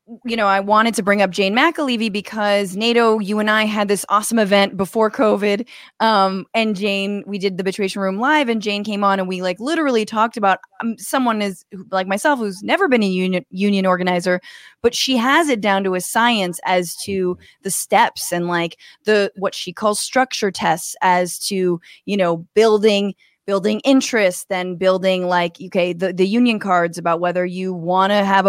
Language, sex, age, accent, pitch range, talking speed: English, female, 20-39, American, 185-215 Hz, 195 wpm